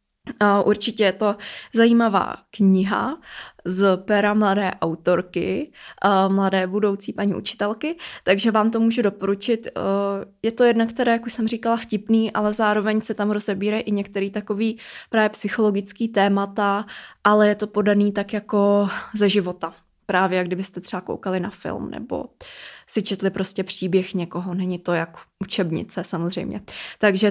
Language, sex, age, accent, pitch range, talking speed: Czech, female, 20-39, native, 190-220 Hz, 145 wpm